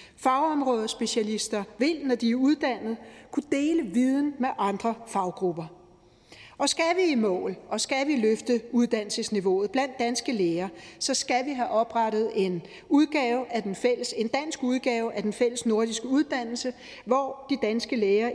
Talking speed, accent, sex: 155 wpm, native, female